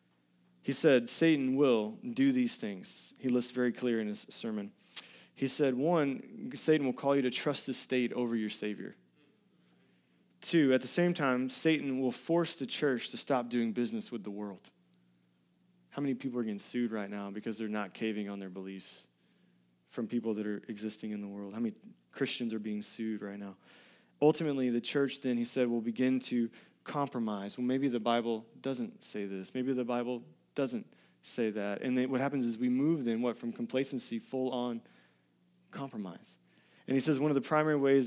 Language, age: English, 20-39